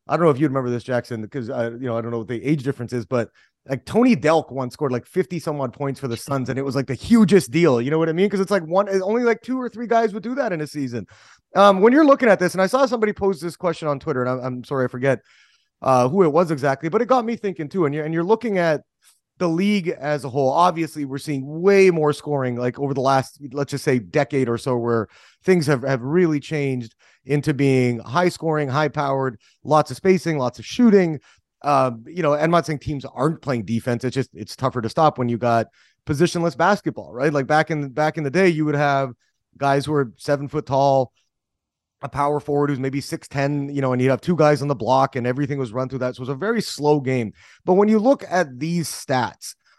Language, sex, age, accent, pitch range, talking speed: English, male, 30-49, American, 130-170 Hz, 260 wpm